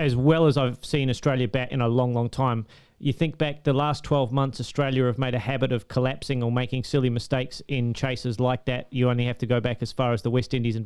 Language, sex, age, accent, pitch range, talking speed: English, male, 30-49, Australian, 130-145 Hz, 260 wpm